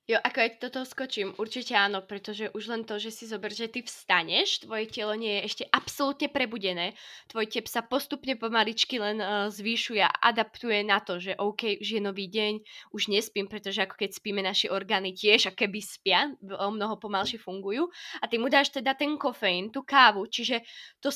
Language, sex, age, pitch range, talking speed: Slovak, female, 20-39, 210-260 Hz, 190 wpm